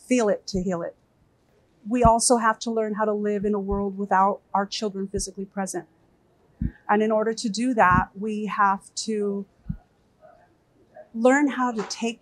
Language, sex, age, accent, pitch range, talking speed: English, female, 40-59, American, 190-215 Hz, 160 wpm